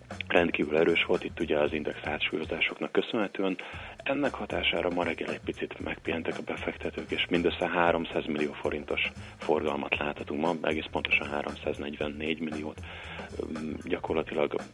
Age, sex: 30-49, male